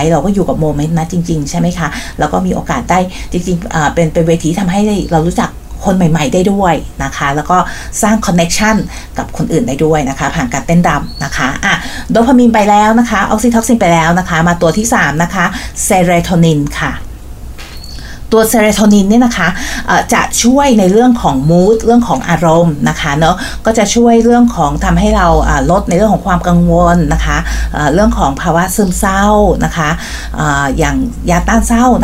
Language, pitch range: Thai, 160-205 Hz